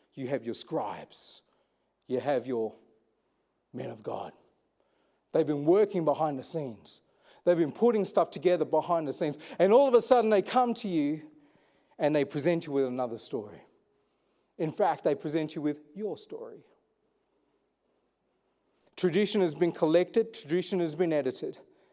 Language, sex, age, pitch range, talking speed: English, male, 40-59, 190-240 Hz, 155 wpm